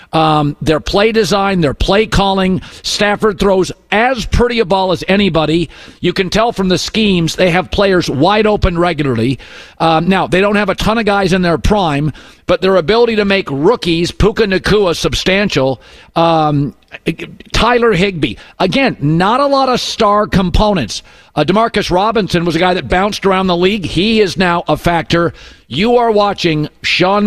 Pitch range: 165-210 Hz